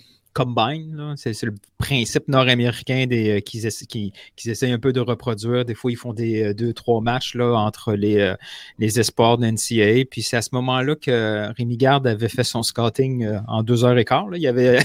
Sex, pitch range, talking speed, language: male, 125-155 Hz, 200 wpm, French